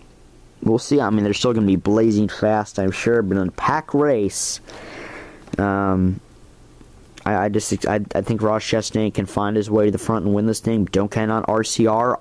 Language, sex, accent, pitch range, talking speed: English, male, American, 100-120 Hz, 200 wpm